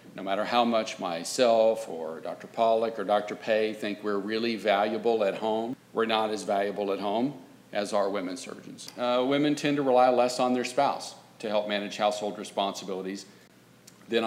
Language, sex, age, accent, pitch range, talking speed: English, male, 40-59, American, 100-120 Hz, 175 wpm